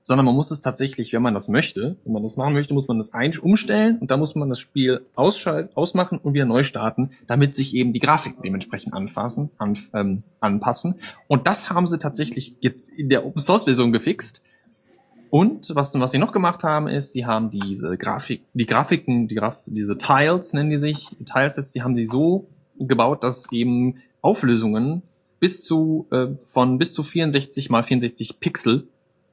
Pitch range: 115-145 Hz